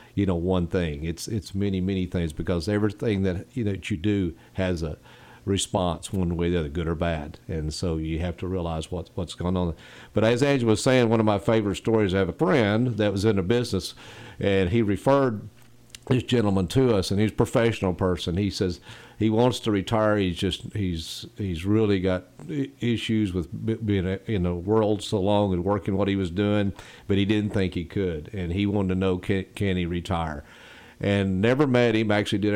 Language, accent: English, American